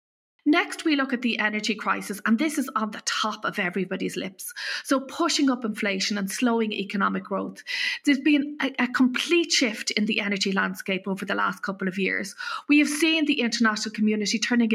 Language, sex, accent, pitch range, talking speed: English, female, Irish, 210-275 Hz, 190 wpm